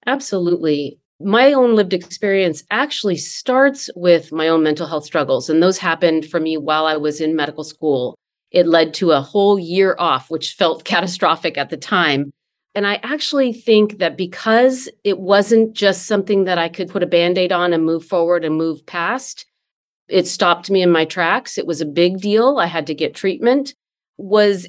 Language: English